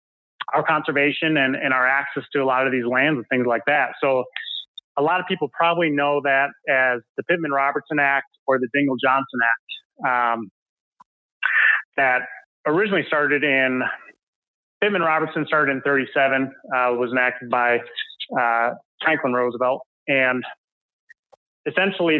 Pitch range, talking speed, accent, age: 125-150 Hz, 140 wpm, American, 30-49